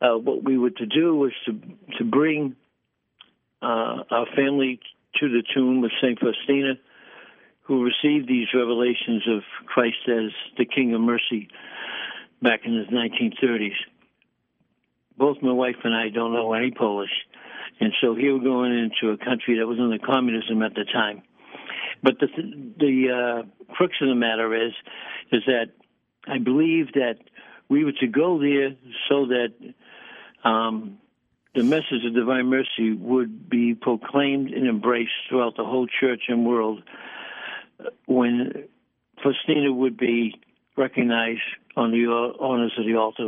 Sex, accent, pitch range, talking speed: male, American, 115-135 Hz, 150 wpm